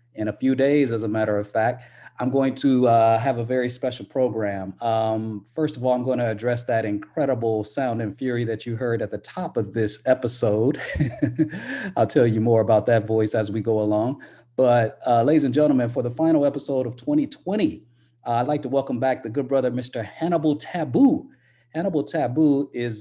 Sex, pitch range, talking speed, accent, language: male, 110-140 Hz, 200 wpm, American, English